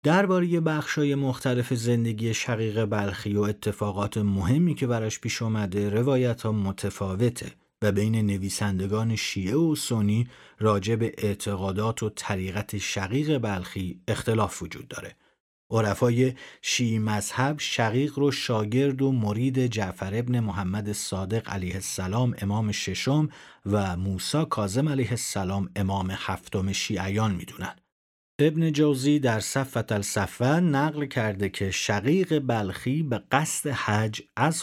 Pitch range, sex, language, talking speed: 100-130 Hz, male, Persian, 125 wpm